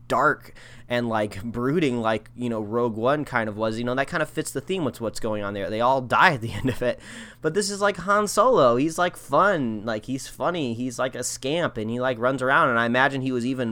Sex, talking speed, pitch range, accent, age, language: male, 260 wpm, 115-135 Hz, American, 20-39, English